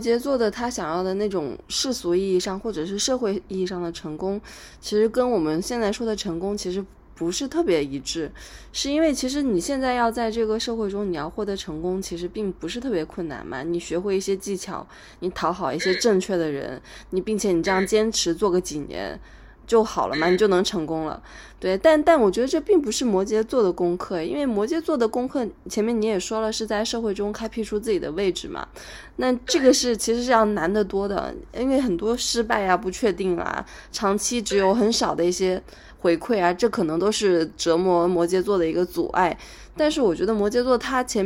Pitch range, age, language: 180-235 Hz, 20-39, Chinese